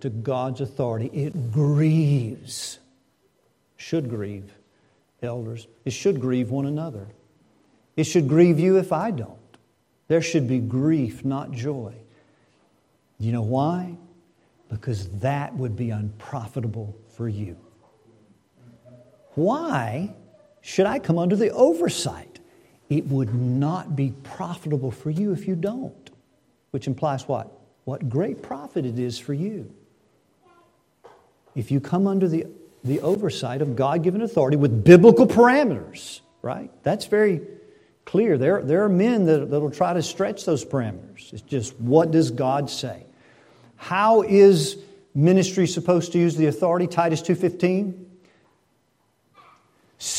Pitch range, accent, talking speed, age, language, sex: 125-180 Hz, American, 125 wpm, 50-69, English, male